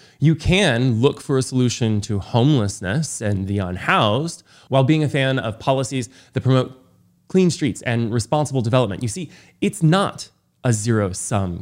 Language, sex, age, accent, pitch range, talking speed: English, male, 20-39, American, 105-145 Hz, 155 wpm